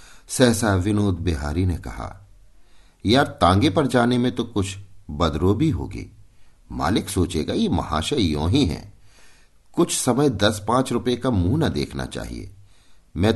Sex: male